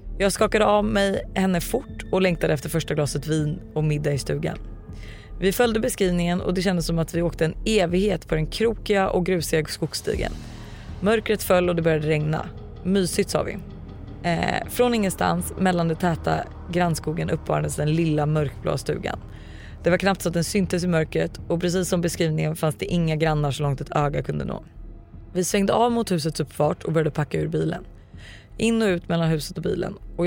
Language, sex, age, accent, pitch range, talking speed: Swedish, female, 30-49, native, 150-185 Hz, 190 wpm